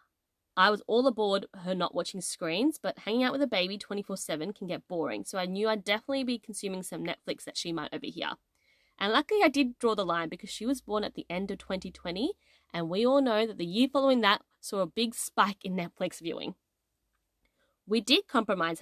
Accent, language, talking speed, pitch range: Australian, English, 215 wpm, 170-235 Hz